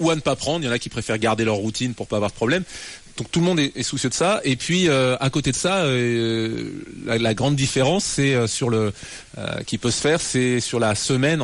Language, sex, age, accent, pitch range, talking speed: French, male, 30-49, French, 110-140 Hz, 255 wpm